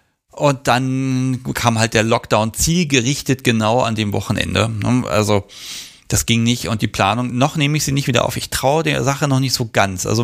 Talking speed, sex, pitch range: 200 wpm, male, 110-135 Hz